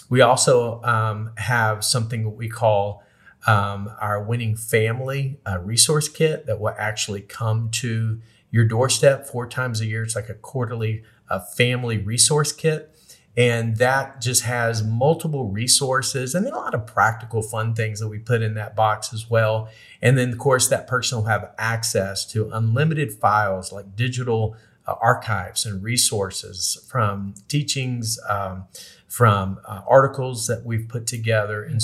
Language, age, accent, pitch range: English, 40-59, American, 110-125 Hz